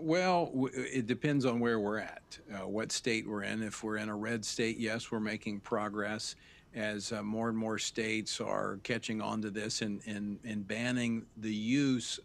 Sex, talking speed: male, 190 wpm